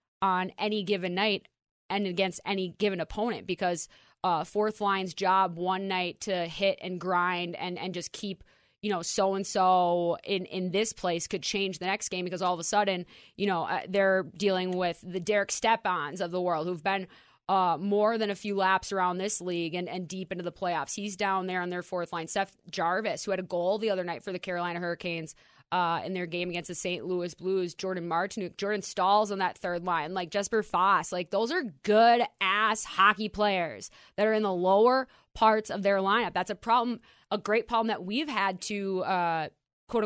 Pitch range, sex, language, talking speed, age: 180-210 Hz, female, English, 210 wpm, 20-39